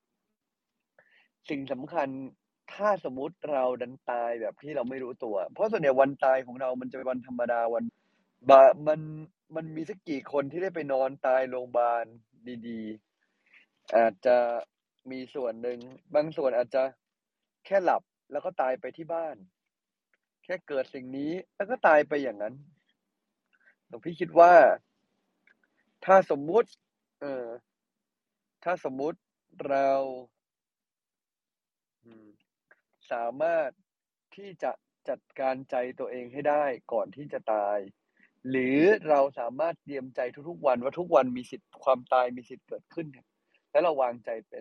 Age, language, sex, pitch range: 30-49, Thai, male, 125-160 Hz